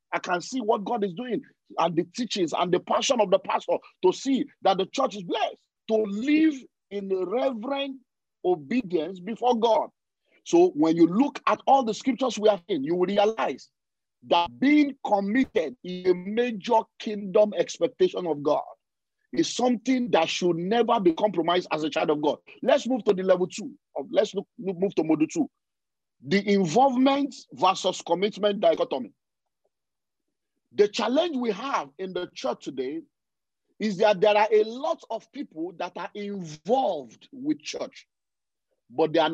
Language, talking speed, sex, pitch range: English, 160 wpm, male, 185-270 Hz